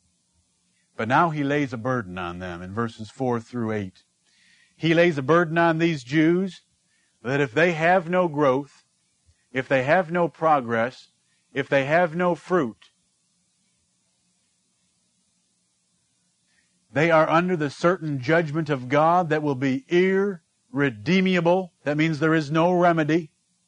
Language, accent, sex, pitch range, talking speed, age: English, American, male, 140-185 Hz, 135 wpm, 50-69